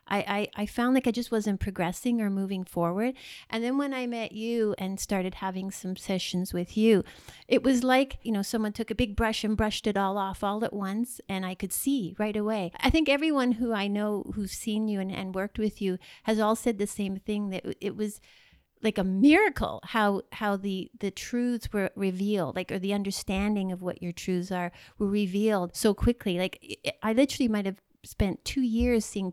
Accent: American